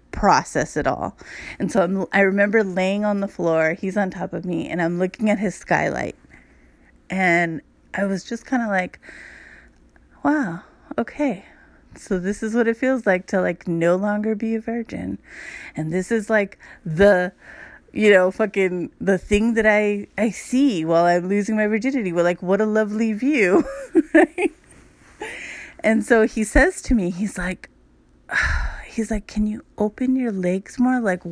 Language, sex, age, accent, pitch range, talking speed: English, female, 30-49, American, 185-230 Hz, 170 wpm